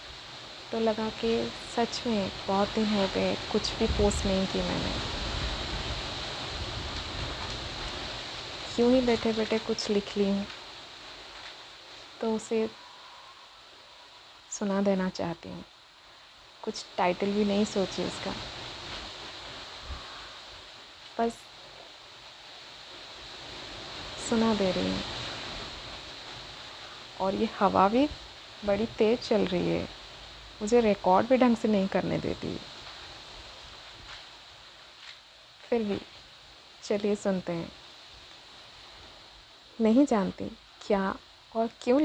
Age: 20-39